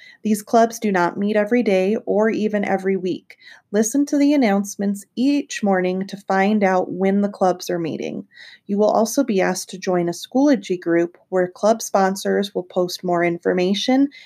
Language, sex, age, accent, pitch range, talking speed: English, female, 30-49, American, 185-230 Hz, 175 wpm